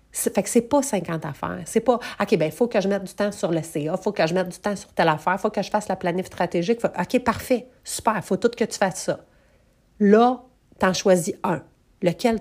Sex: female